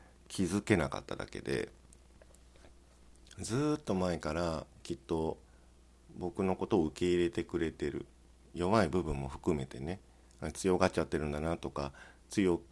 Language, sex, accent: Japanese, male, native